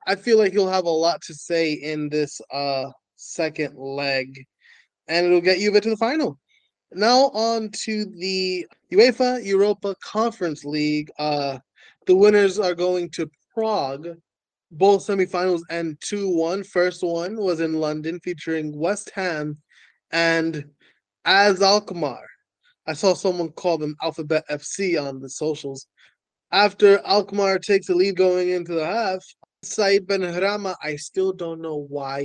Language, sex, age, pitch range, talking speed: English, male, 20-39, 150-195 Hz, 150 wpm